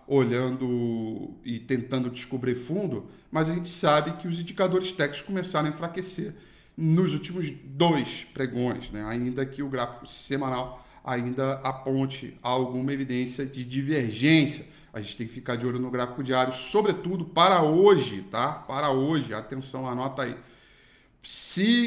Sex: male